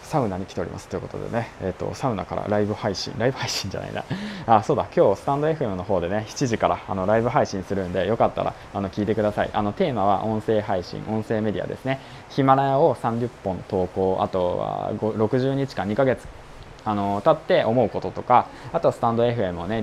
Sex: male